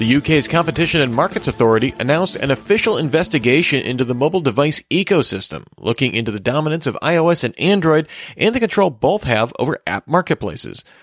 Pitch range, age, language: 115-155 Hz, 30-49, English